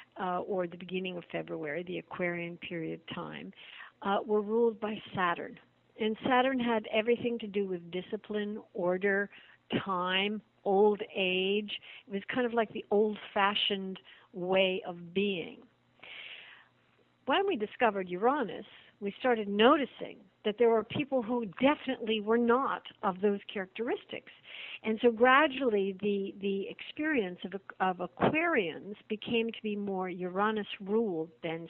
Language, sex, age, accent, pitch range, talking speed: English, female, 60-79, American, 195-230 Hz, 135 wpm